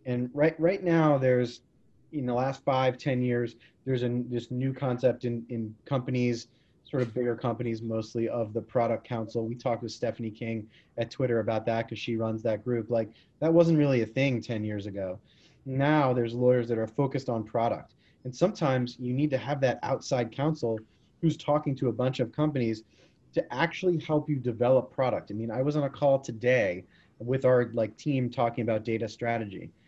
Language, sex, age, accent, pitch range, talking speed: English, male, 30-49, American, 115-135 Hz, 195 wpm